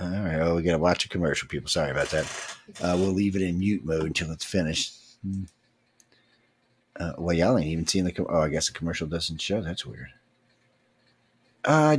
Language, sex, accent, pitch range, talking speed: English, male, American, 95-130 Hz, 200 wpm